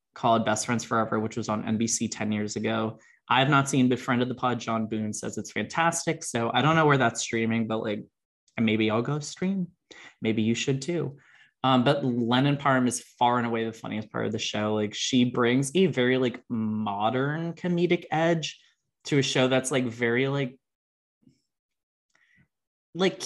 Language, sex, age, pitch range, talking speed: English, male, 20-39, 115-145 Hz, 185 wpm